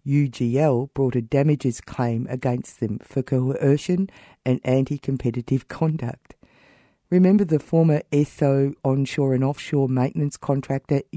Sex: female